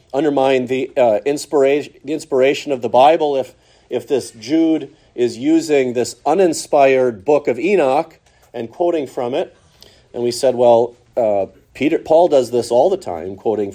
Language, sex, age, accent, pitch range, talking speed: English, male, 40-59, American, 115-160 Hz, 160 wpm